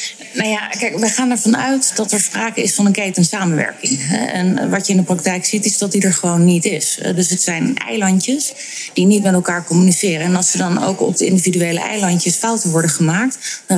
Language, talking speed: Dutch, 220 wpm